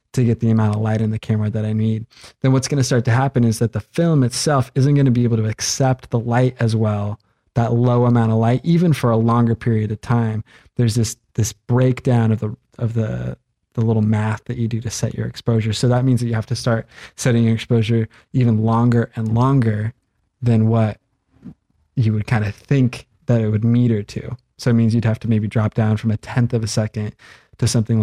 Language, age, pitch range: English, 20-39, 110-120 Hz